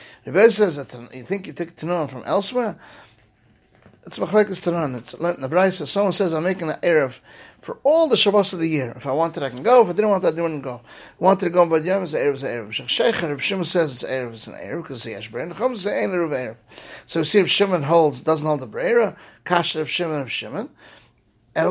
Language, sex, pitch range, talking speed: English, male, 140-185 Hz, 235 wpm